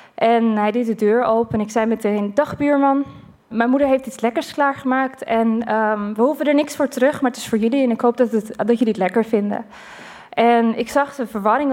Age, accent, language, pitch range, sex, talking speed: 20-39, Dutch, Dutch, 215-250 Hz, female, 235 wpm